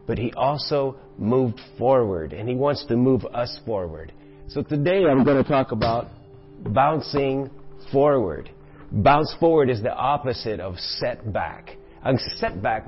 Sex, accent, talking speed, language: male, American, 140 wpm, English